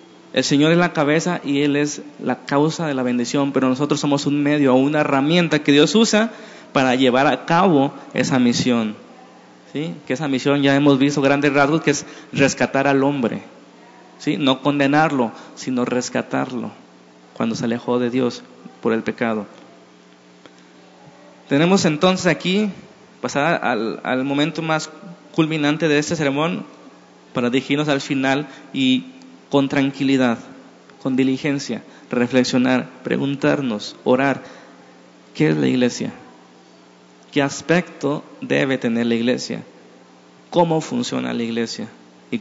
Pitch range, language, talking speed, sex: 115-150 Hz, Spanish, 135 wpm, male